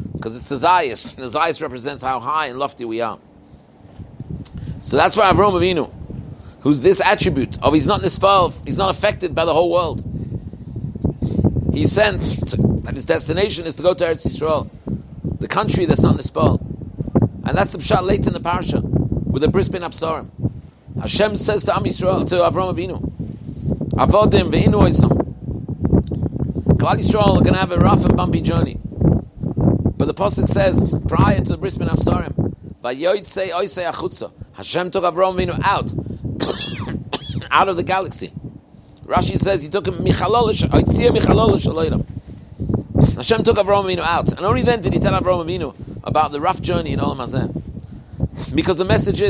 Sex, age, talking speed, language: male, 50-69, 160 wpm, English